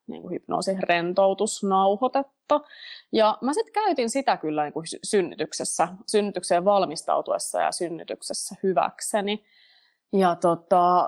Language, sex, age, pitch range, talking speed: Finnish, female, 30-49, 160-205 Hz, 90 wpm